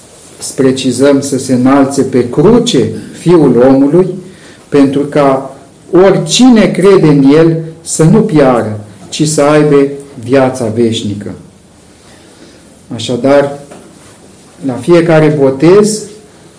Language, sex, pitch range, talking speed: Romanian, male, 130-170 Hz, 95 wpm